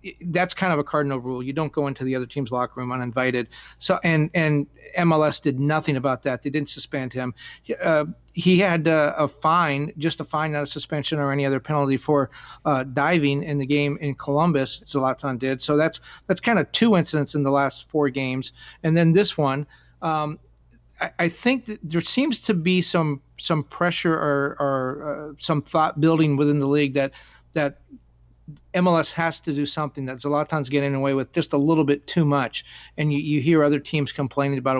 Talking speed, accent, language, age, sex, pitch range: 200 wpm, American, English, 40-59, male, 140-170 Hz